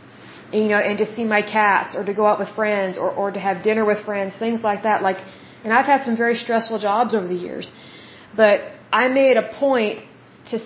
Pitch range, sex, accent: 200-235 Hz, female, American